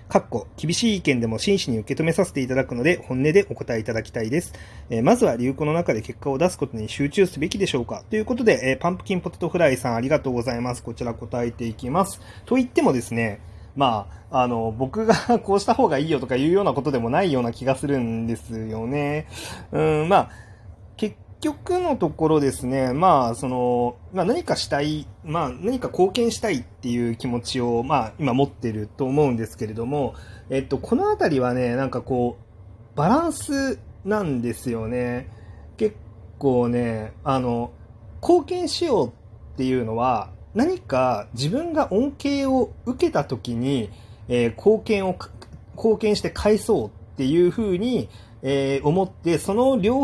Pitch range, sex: 120-195 Hz, male